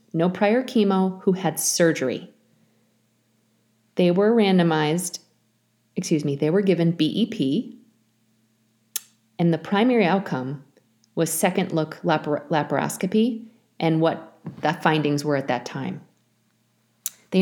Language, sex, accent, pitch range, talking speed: English, female, American, 130-190 Hz, 105 wpm